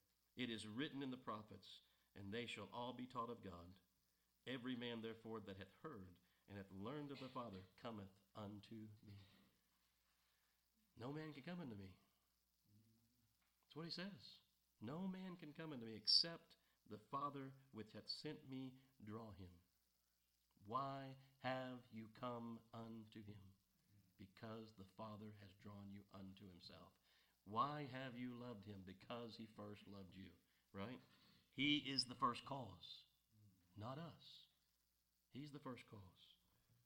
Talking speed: 145 wpm